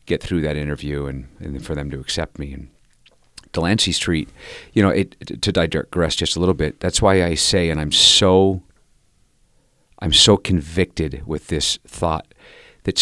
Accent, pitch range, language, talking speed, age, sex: American, 80-105 Hz, English, 175 wpm, 40-59, male